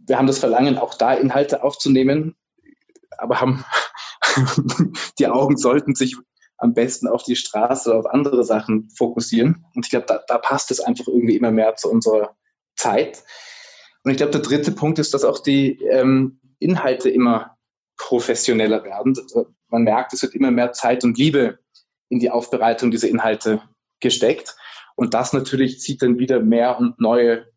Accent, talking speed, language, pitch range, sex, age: German, 170 wpm, German, 120-150 Hz, male, 20-39